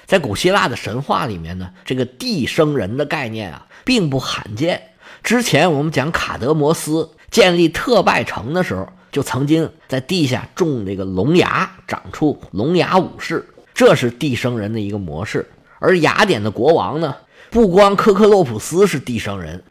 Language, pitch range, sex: Chinese, 110-165 Hz, male